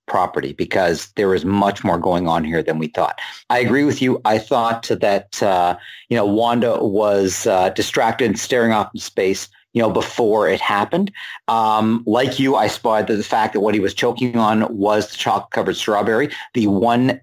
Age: 50-69